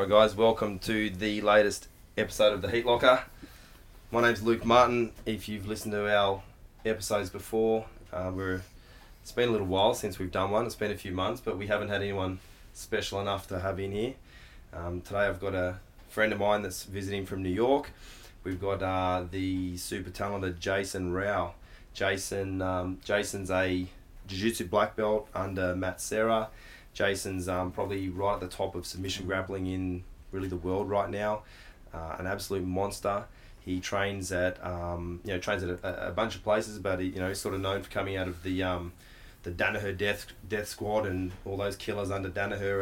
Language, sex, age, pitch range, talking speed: English, male, 20-39, 95-105 Hz, 195 wpm